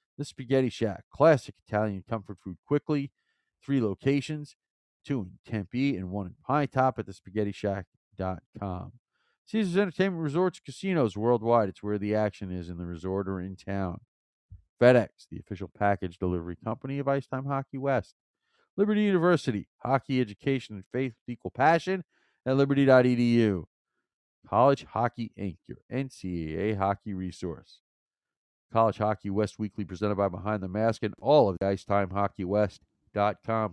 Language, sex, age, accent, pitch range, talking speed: English, male, 40-59, American, 95-130 Hz, 150 wpm